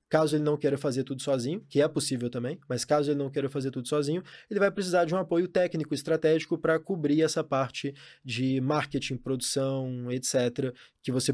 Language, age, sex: Portuguese, 20-39, male